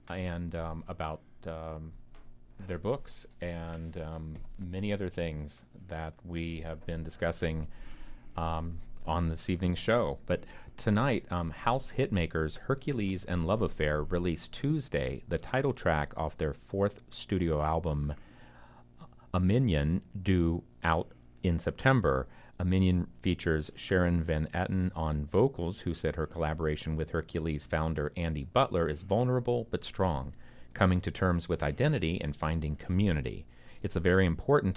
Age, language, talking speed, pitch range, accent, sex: 40-59, English, 135 wpm, 75-90 Hz, American, male